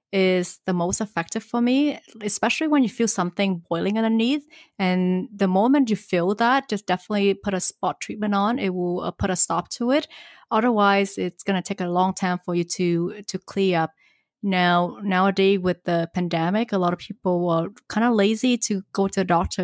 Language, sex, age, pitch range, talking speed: English, female, 20-39, 185-225 Hz, 200 wpm